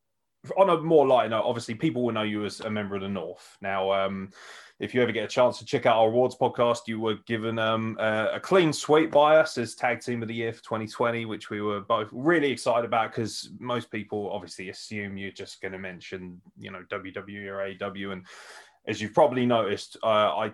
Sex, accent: male, British